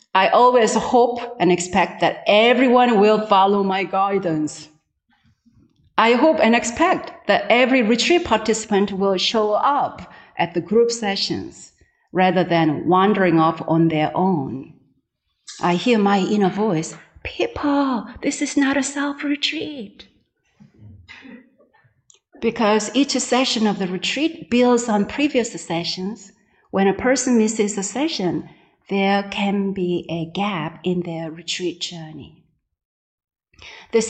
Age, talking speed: 40-59, 125 wpm